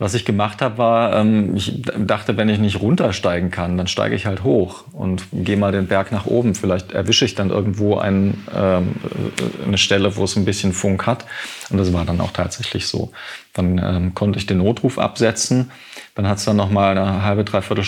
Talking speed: 200 wpm